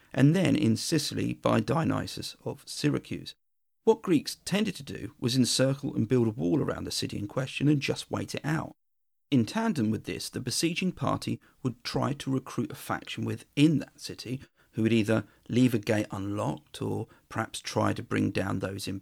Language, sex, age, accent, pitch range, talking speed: English, male, 40-59, British, 110-145 Hz, 190 wpm